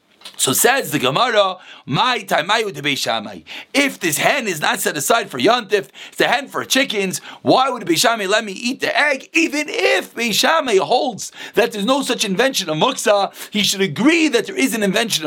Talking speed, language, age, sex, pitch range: 180 wpm, English, 40-59, male, 210-270 Hz